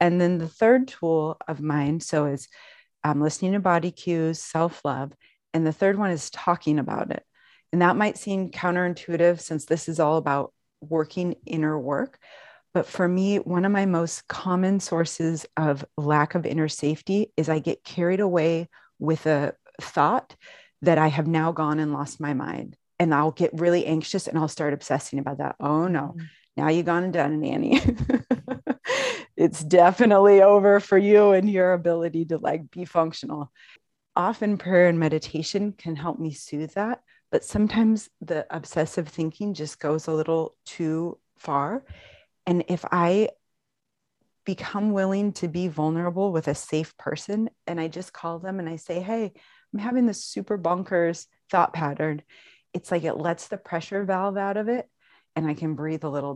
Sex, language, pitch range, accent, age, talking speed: female, English, 155-195 Hz, American, 30-49, 175 wpm